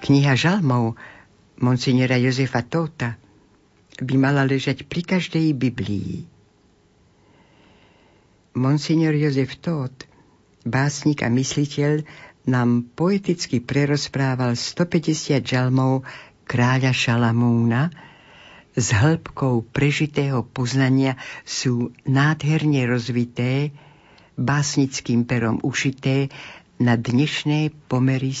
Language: Slovak